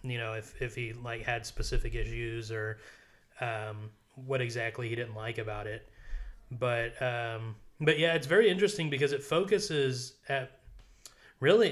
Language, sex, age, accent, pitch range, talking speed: English, male, 30-49, American, 115-130 Hz, 155 wpm